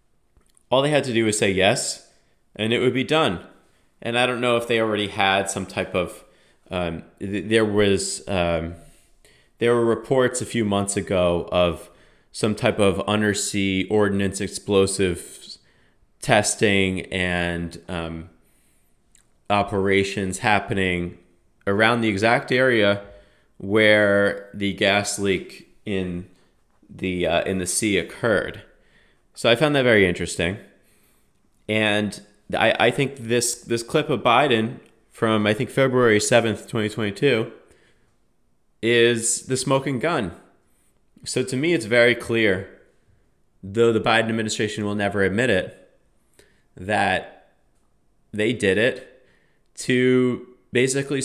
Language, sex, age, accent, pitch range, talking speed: English, male, 30-49, American, 95-120 Hz, 125 wpm